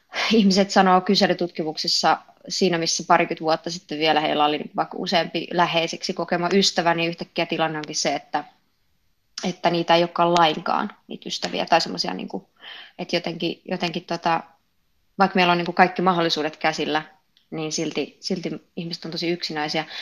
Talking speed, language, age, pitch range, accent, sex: 155 wpm, Finnish, 20-39, 160-190 Hz, native, female